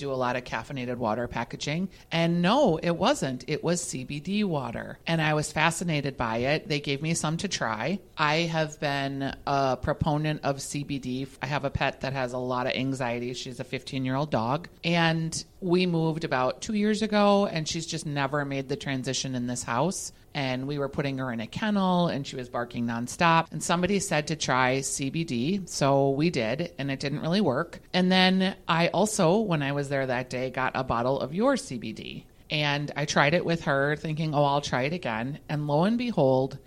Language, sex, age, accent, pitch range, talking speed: English, female, 30-49, American, 130-170 Hz, 205 wpm